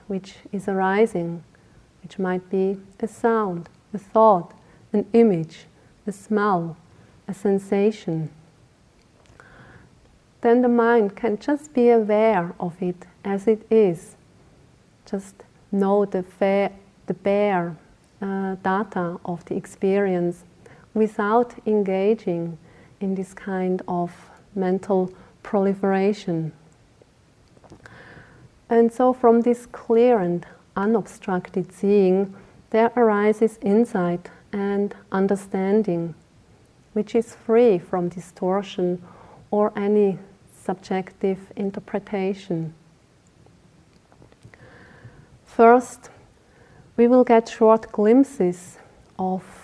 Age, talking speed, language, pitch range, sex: 40-59, 90 wpm, English, 185-220 Hz, female